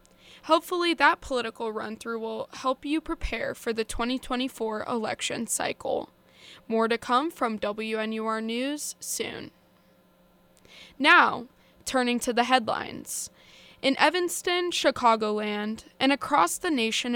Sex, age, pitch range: female, 10-29, 225-285 Hz